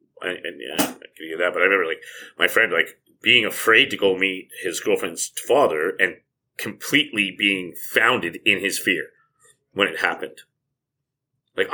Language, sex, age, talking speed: English, male, 30-49, 160 wpm